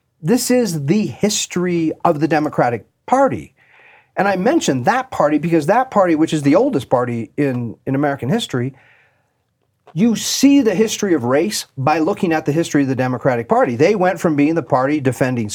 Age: 40-59